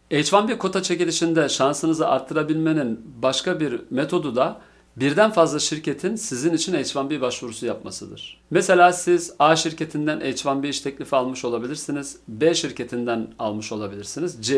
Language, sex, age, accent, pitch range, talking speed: Turkish, male, 50-69, native, 125-160 Hz, 130 wpm